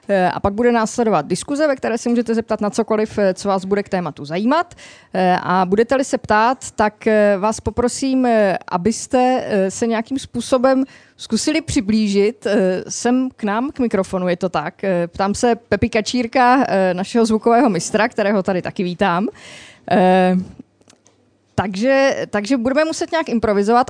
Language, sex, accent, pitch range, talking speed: Czech, female, native, 205-265 Hz, 140 wpm